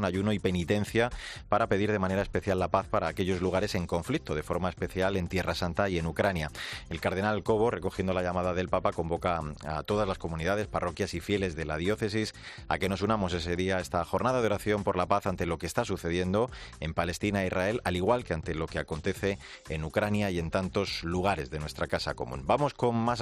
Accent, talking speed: Spanish, 220 wpm